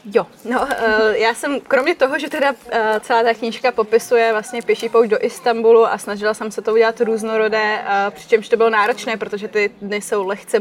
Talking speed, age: 185 wpm, 20-39